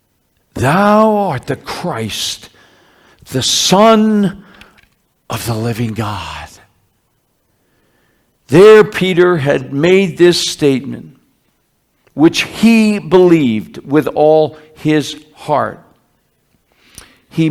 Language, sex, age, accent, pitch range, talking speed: English, male, 60-79, American, 120-175 Hz, 80 wpm